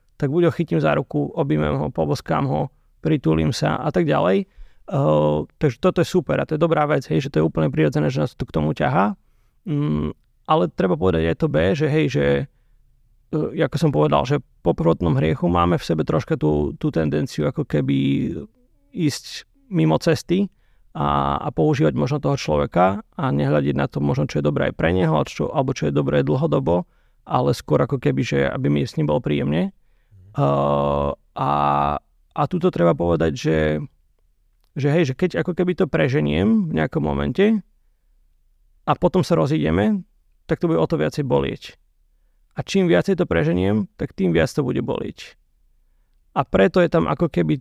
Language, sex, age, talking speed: Slovak, male, 30-49, 185 wpm